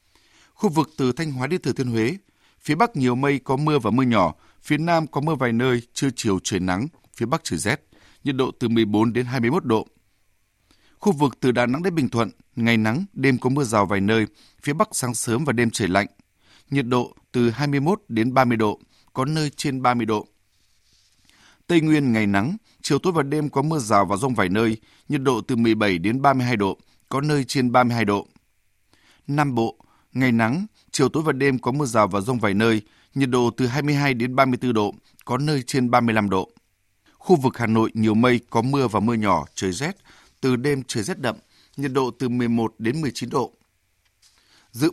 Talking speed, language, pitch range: 205 wpm, Vietnamese, 110-140 Hz